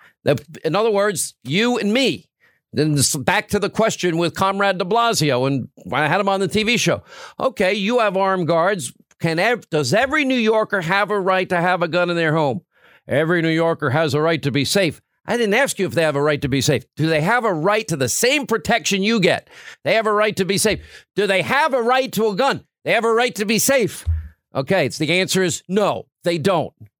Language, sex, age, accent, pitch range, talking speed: English, male, 50-69, American, 150-200 Hz, 240 wpm